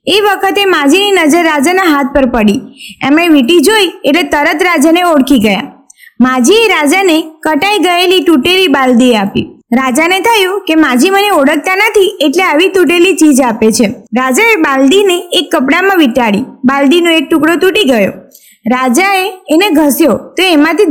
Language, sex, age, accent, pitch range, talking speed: Gujarati, female, 20-39, native, 275-385 Hz, 95 wpm